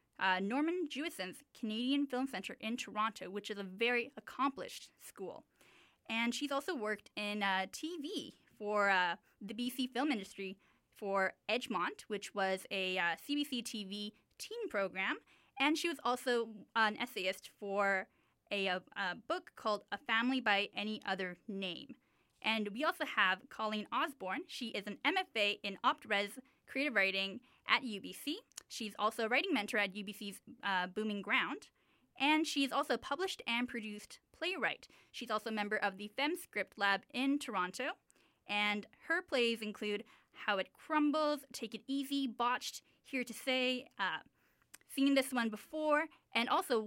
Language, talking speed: English, 155 wpm